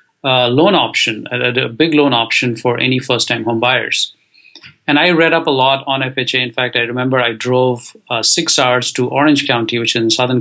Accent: Indian